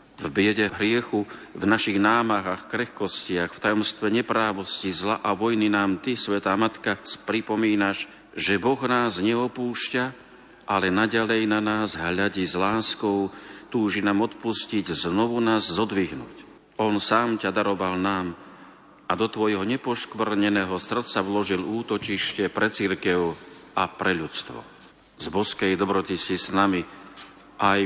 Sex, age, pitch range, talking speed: male, 50-69, 95-110 Hz, 125 wpm